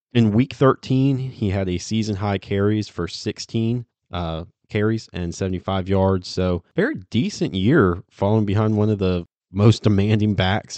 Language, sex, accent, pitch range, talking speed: English, male, American, 90-115 Hz, 150 wpm